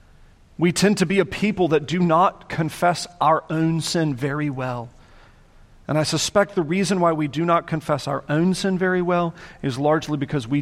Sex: male